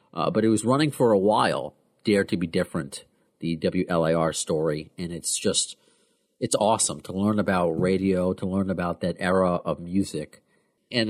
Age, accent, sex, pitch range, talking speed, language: 40-59, American, male, 105-135 Hz, 170 wpm, English